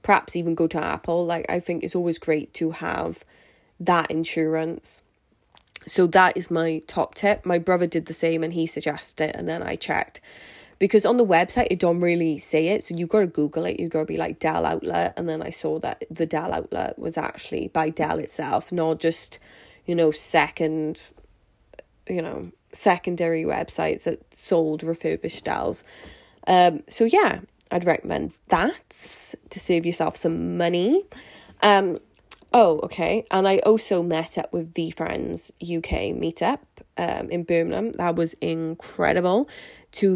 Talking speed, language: 170 wpm, English